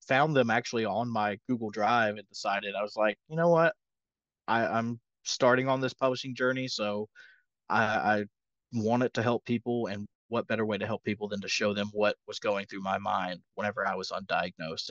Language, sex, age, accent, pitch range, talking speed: English, male, 20-39, American, 105-125 Hz, 195 wpm